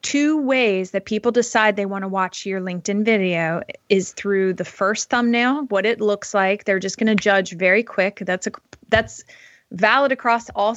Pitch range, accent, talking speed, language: 195-235 Hz, American, 190 wpm, English